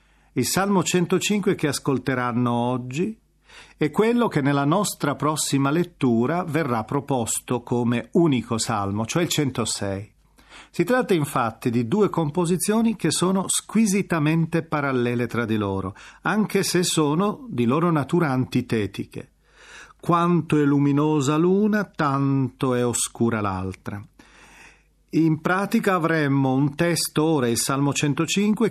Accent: native